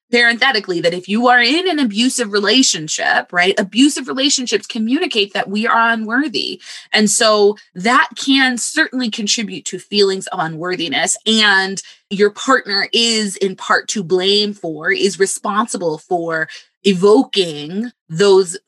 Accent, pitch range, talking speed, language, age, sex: American, 180-235 Hz, 130 wpm, English, 20-39, female